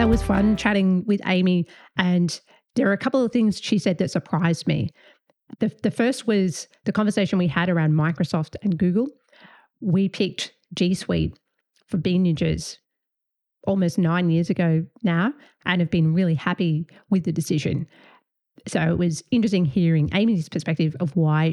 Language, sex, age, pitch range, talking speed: English, female, 30-49, 165-205 Hz, 165 wpm